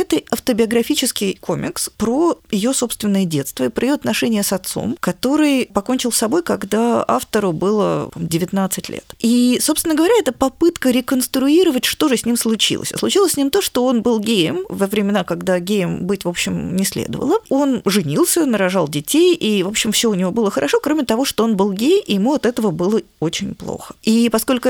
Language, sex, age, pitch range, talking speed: Russian, female, 20-39, 180-255 Hz, 185 wpm